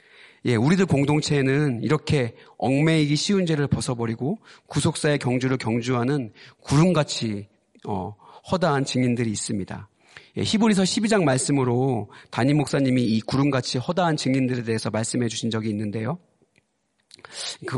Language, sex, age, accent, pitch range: Korean, male, 40-59, native, 120-150 Hz